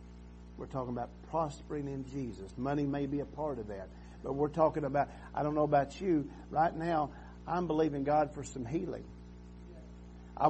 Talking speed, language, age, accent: 175 wpm, English, 50-69, American